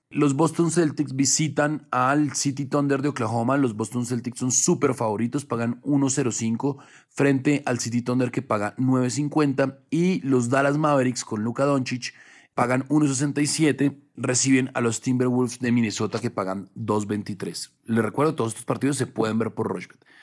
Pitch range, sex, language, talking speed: 115-140 Hz, male, Spanish, 155 wpm